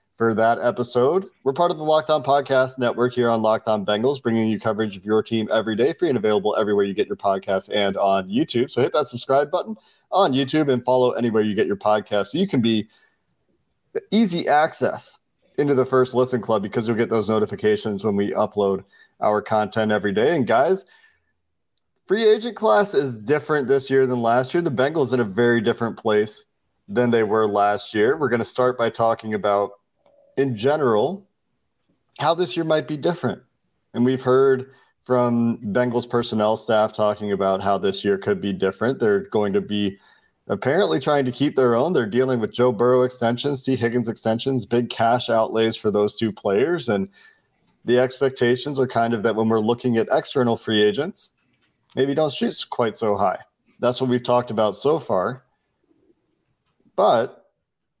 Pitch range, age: 110-135 Hz, 30-49